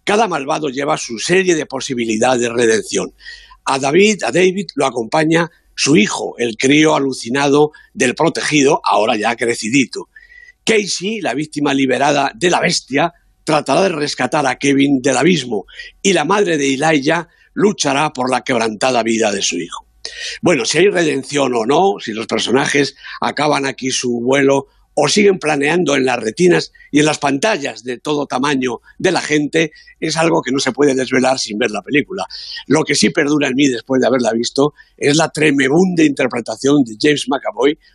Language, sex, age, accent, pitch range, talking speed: Spanish, male, 50-69, Spanish, 130-165 Hz, 170 wpm